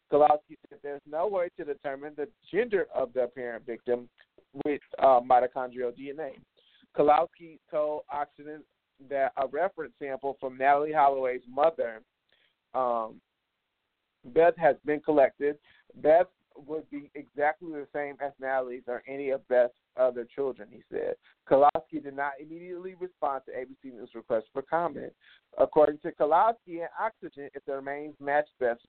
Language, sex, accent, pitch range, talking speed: English, male, American, 135-165 Hz, 145 wpm